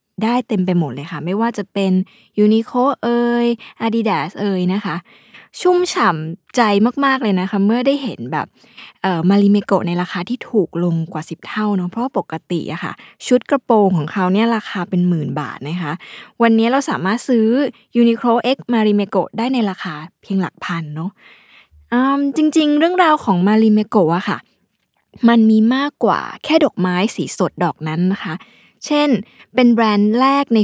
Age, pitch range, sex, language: 20-39, 180-240 Hz, female, Thai